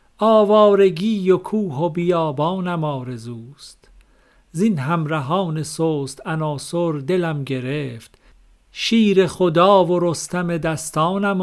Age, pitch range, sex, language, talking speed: 50-69, 150-195 Hz, male, Persian, 90 wpm